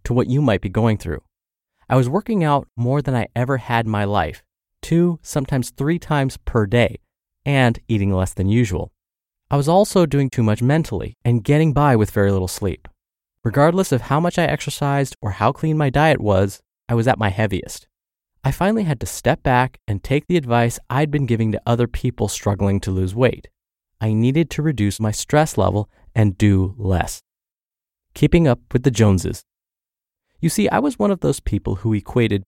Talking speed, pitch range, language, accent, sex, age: 195 wpm, 105-150 Hz, English, American, male, 20-39